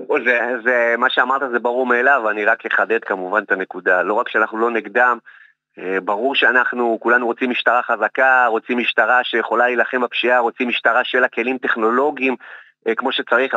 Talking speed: 170 wpm